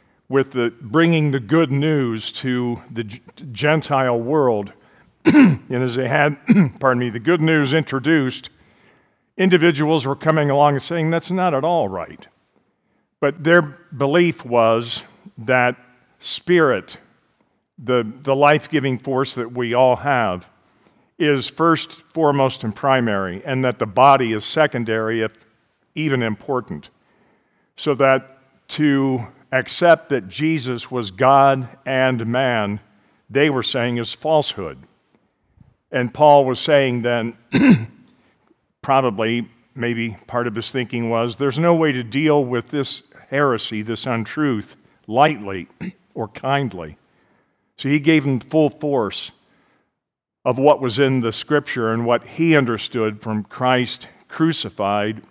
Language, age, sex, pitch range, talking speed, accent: English, 50-69, male, 115-150 Hz, 130 wpm, American